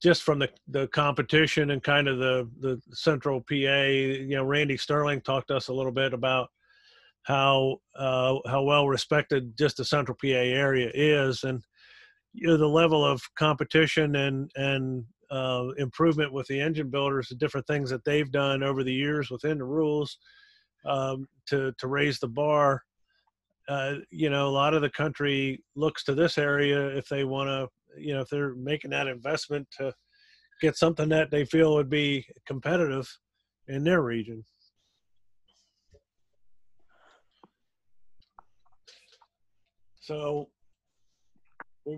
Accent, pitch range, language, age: American, 130-150 Hz, English, 50-69